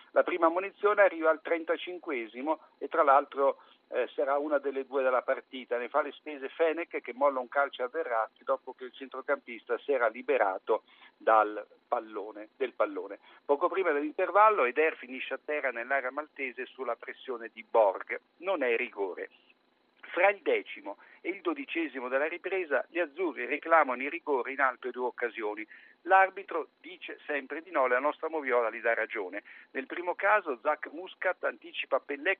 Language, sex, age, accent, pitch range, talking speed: Italian, male, 50-69, native, 135-205 Hz, 165 wpm